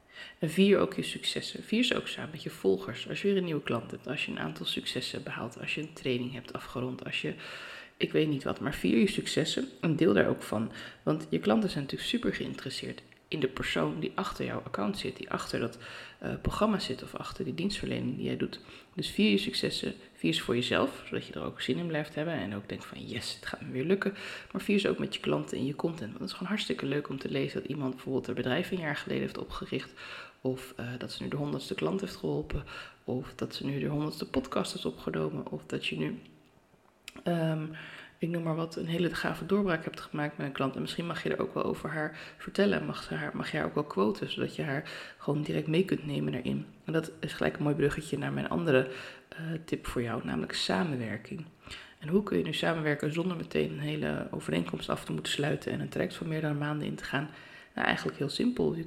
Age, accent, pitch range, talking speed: 20-39, Dutch, 130-180 Hz, 245 wpm